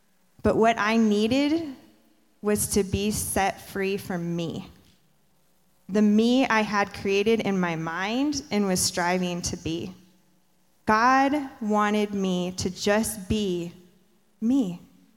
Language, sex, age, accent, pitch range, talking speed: English, female, 20-39, American, 185-225 Hz, 125 wpm